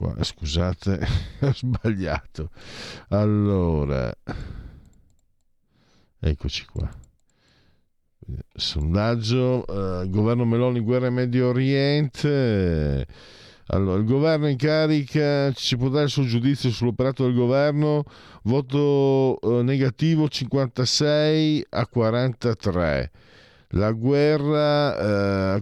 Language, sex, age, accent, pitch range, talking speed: Italian, male, 50-69, native, 100-140 Hz, 85 wpm